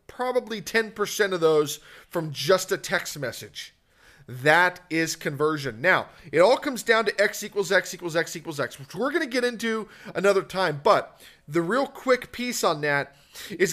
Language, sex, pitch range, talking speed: English, male, 170-225 Hz, 180 wpm